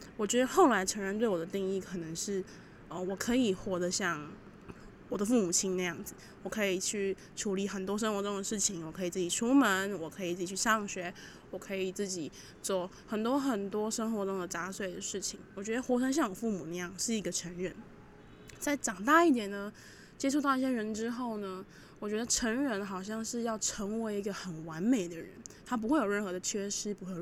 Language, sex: Chinese, female